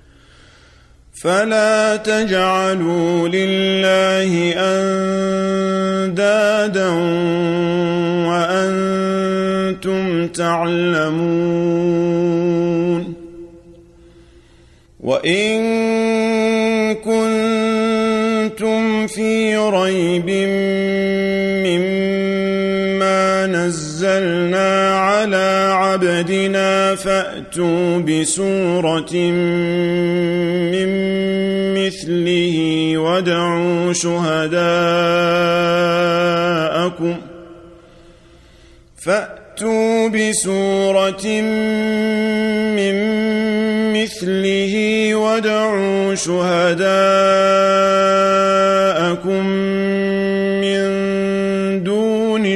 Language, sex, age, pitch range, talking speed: Arabic, male, 40-59, 175-195 Hz, 30 wpm